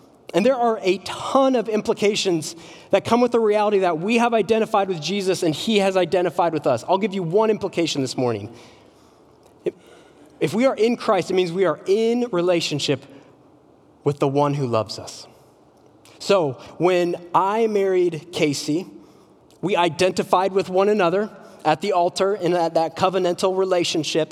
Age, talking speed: 20-39, 165 wpm